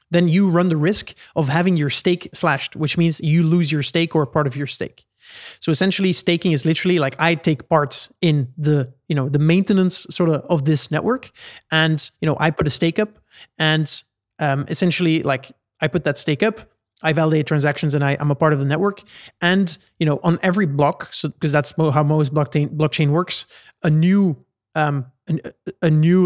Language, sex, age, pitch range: English, male, 30-49, 150-175 Hz